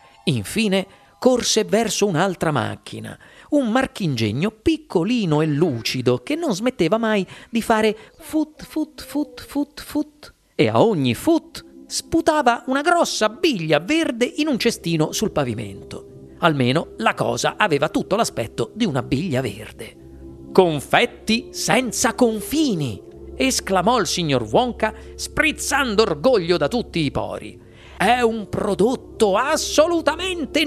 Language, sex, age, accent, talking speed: Italian, male, 40-59, native, 120 wpm